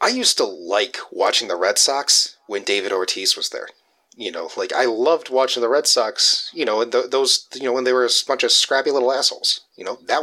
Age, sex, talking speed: 30-49, male, 230 wpm